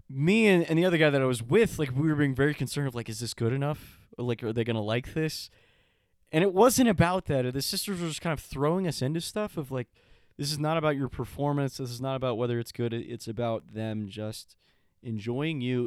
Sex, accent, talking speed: male, American, 245 wpm